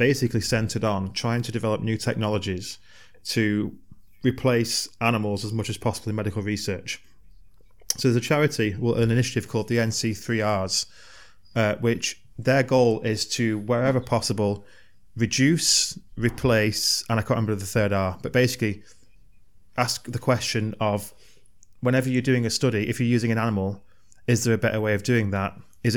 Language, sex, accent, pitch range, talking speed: Ukrainian, male, British, 100-120 Hz, 160 wpm